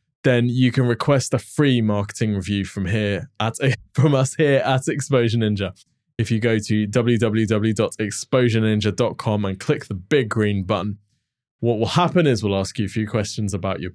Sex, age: male, 20-39